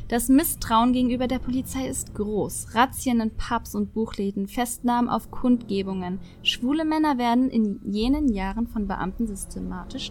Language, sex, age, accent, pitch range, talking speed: German, female, 20-39, German, 205-260 Hz, 140 wpm